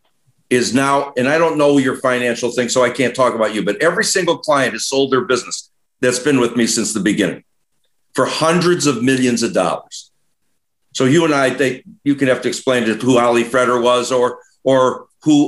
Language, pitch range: English, 125-145 Hz